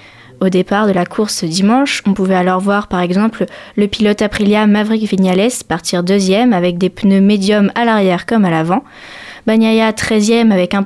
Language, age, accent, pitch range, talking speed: French, 20-39, French, 180-225 Hz, 175 wpm